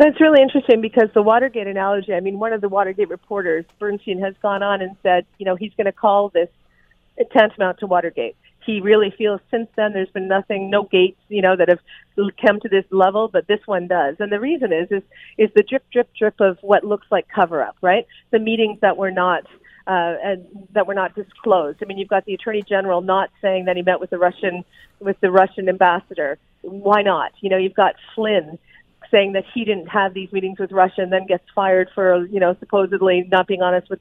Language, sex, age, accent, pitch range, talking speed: English, female, 40-59, American, 190-225 Hz, 230 wpm